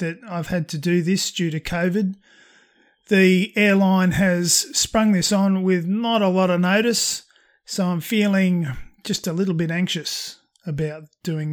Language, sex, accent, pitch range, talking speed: English, male, Australian, 165-195 Hz, 160 wpm